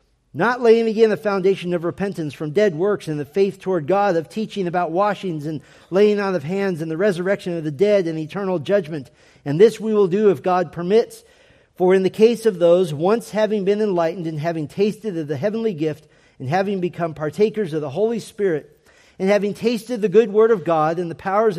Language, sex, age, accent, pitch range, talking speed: English, male, 40-59, American, 145-195 Hz, 215 wpm